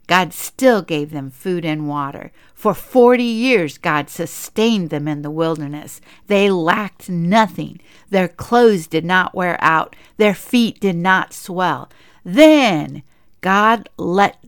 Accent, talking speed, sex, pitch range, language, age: American, 135 wpm, female, 180-260 Hz, English, 60-79